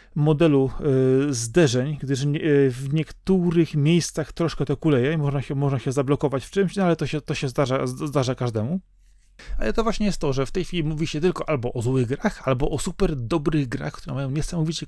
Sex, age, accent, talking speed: male, 30-49, native, 215 wpm